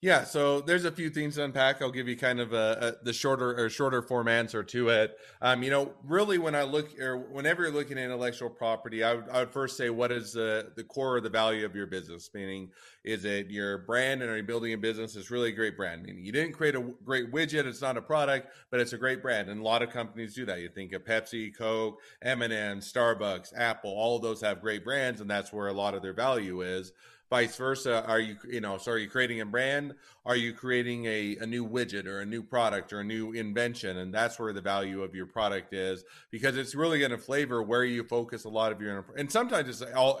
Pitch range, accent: 105-125 Hz, American